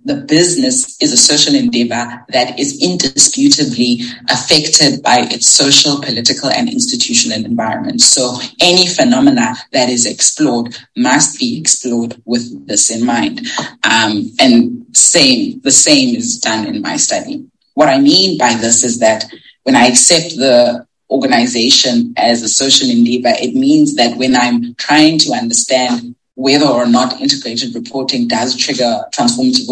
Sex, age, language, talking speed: female, 20-39, English, 145 wpm